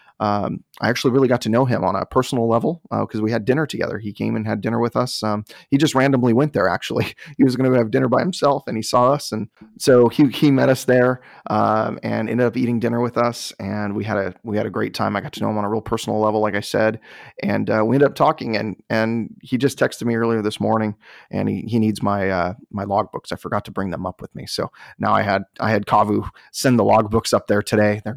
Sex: male